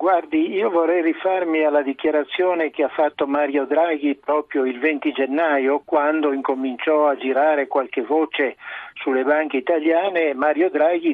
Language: Italian